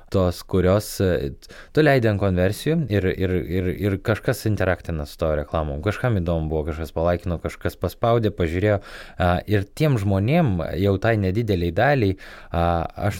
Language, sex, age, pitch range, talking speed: English, male, 20-39, 85-105 Hz, 135 wpm